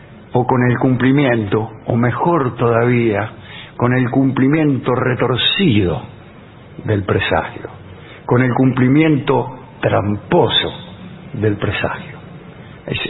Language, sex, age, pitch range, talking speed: English, male, 60-79, 115-140 Hz, 90 wpm